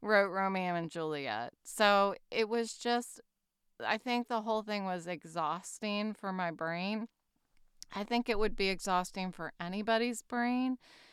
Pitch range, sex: 180-225 Hz, female